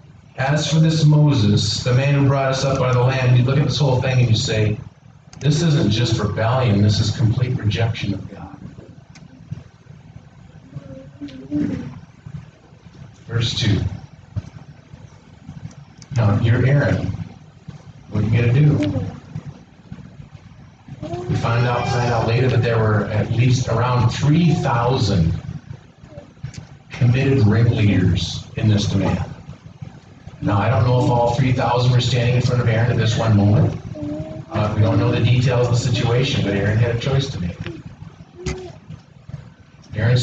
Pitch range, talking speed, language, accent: 115-140 Hz, 145 wpm, English, American